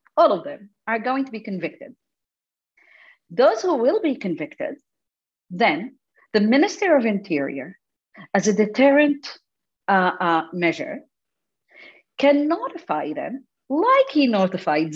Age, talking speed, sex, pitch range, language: 40-59, 120 wpm, female, 180-280 Hz, English